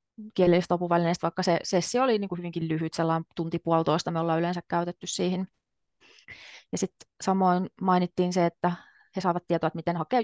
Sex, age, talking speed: female, 30-49, 170 wpm